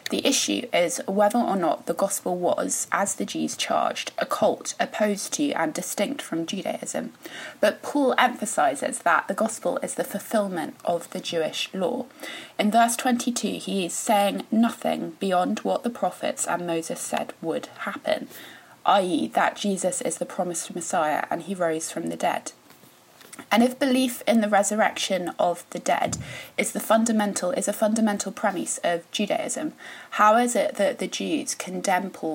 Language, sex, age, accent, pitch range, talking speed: English, female, 20-39, British, 185-255 Hz, 165 wpm